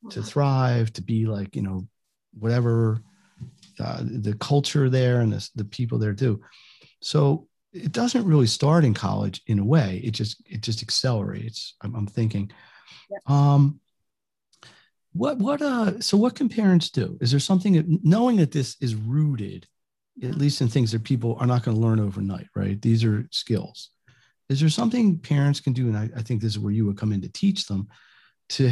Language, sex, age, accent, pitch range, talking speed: English, male, 40-59, American, 110-145 Hz, 190 wpm